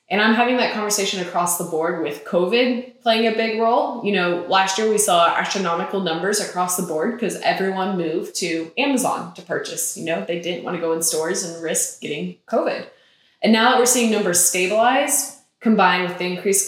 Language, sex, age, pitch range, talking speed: English, female, 10-29, 170-215 Hz, 200 wpm